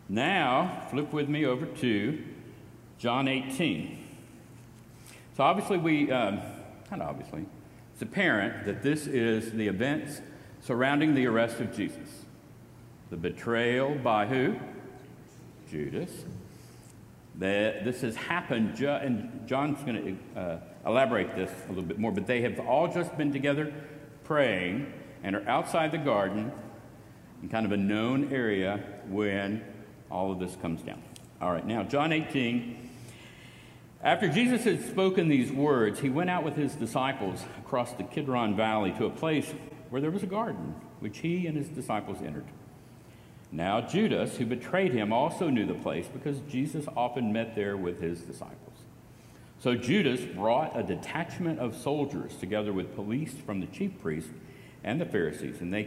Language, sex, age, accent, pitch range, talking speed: English, male, 60-79, American, 105-145 Hz, 150 wpm